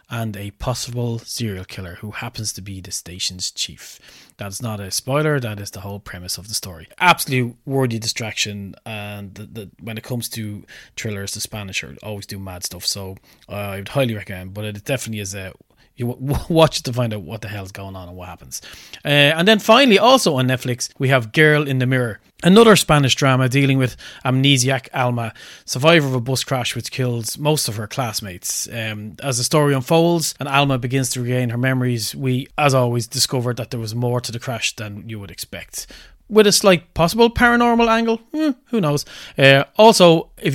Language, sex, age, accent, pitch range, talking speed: English, male, 30-49, Irish, 105-140 Hz, 205 wpm